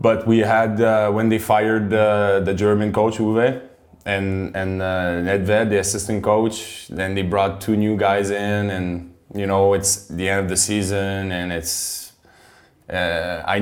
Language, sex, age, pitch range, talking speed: Czech, male, 20-39, 90-100 Hz, 170 wpm